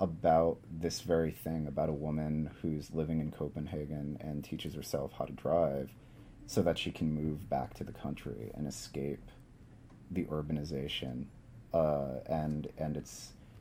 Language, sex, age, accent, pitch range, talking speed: English, male, 30-49, American, 75-105 Hz, 150 wpm